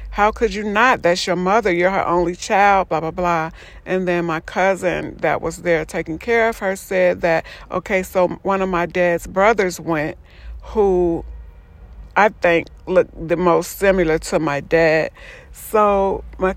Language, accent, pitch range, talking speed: English, American, 160-205 Hz, 170 wpm